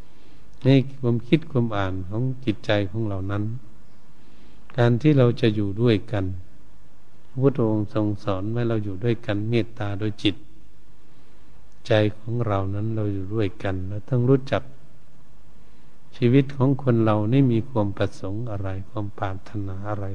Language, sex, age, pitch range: Thai, male, 70-89, 100-120 Hz